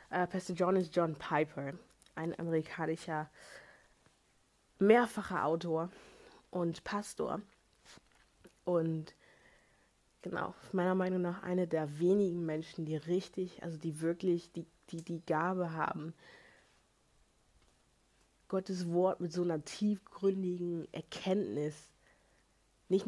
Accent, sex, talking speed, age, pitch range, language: German, female, 100 wpm, 20-39, 160-185 Hz, German